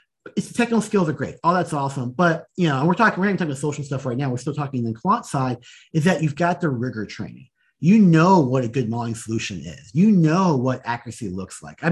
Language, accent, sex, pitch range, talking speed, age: English, American, male, 130-175 Hz, 265 wpm, 40-59